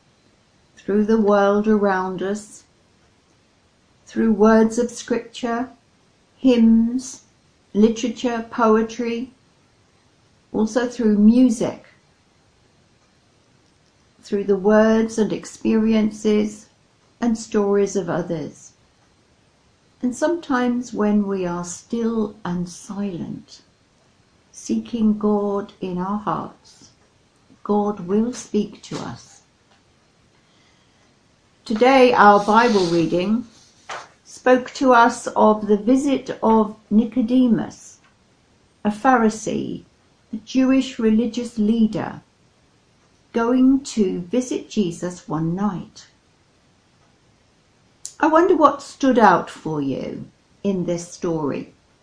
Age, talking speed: 60-79, 90 wpm